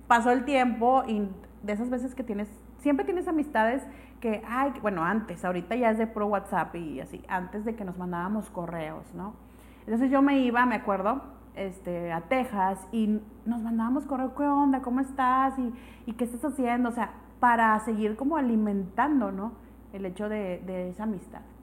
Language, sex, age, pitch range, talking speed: Spanish, female, 30-49, 195-255 Hz, 185 wpm